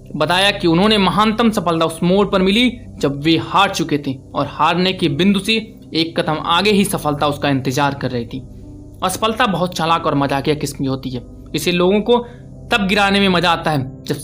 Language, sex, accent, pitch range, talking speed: Hindi, male, native, 140-195 Hz, 200 wpm